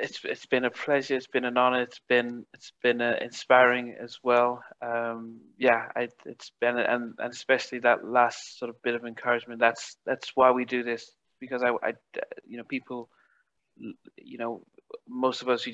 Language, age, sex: English, 20-39, male